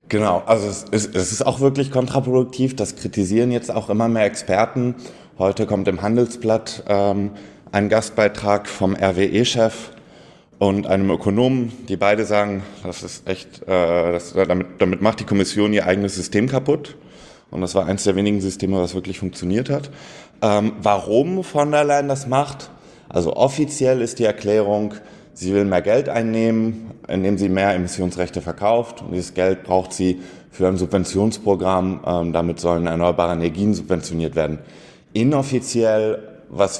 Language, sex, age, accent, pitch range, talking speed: German, male, 20-39, German, 95-115 Hz, 155 wpm